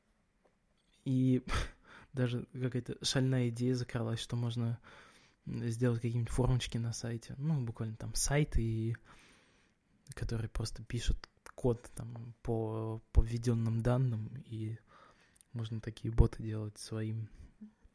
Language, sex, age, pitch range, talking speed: Russian, male, 20-39, 115-135 Hz, 105 wpm